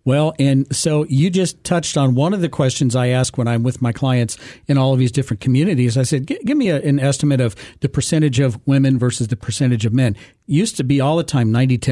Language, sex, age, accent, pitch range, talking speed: English, male, 50-69, American, 130-165 Hz, 235 wpm